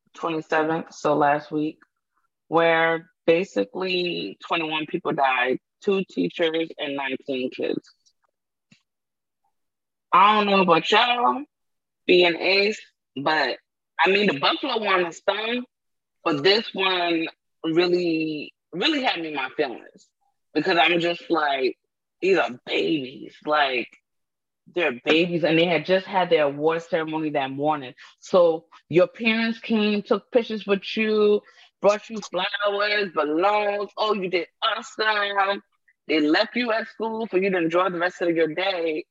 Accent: American